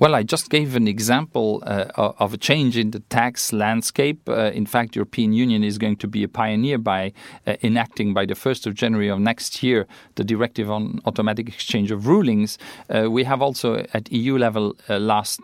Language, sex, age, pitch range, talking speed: English, male, 40-59, 110-130 Hz, 205 wpm